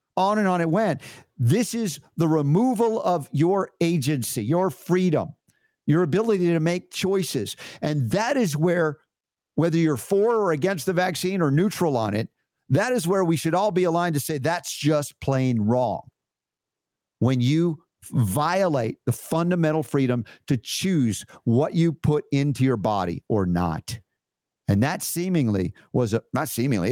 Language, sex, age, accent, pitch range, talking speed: English, male, 50-69, American, 115-165 Hz, 155 wpm